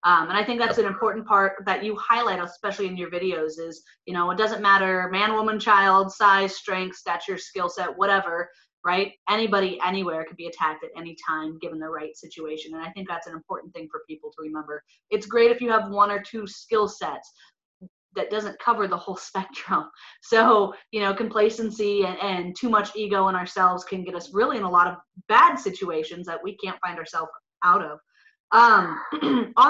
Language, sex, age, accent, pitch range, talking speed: English, female, 30-49, American, 185-230 Hz, 200 wpm